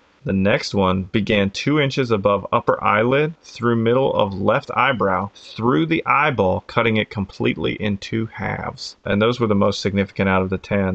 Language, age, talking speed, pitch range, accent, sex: English, 30-49, 180 wpm, 100-110 Hz, American, male